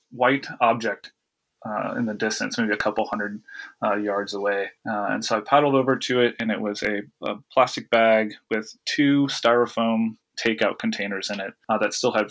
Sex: male